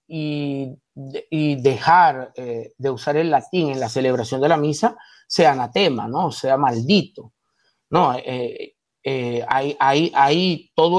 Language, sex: Spanish, male